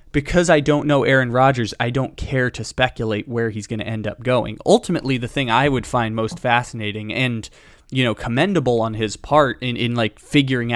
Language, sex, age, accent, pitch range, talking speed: English, male, 20-39, American, 115-130 Hz, 205 wpm